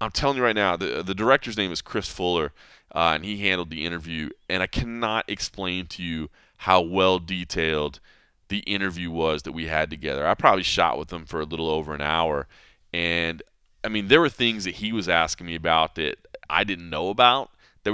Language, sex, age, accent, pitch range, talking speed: English, male, 20-39, American, 85-105 Hz, 210 wpm